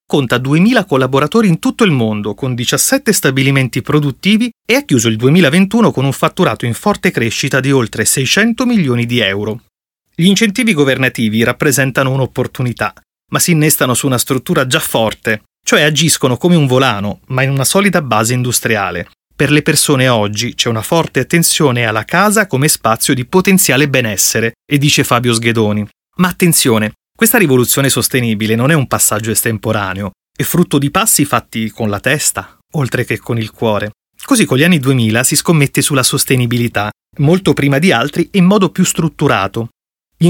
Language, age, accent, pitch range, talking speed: Italian, 30-49, native, 120-165 Hz, 170 wpm